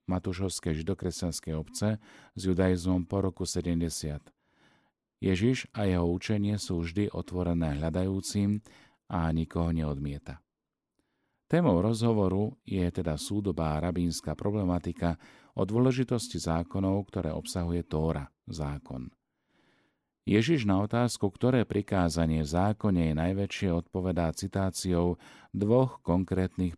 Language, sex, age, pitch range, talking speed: Slovak, male, 40-59, 85-105 Hz, 100 wpm